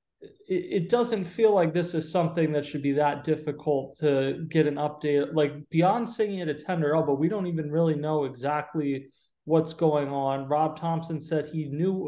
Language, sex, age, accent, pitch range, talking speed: English, male, 30-49, American, 140-165 Hz, 185 wpm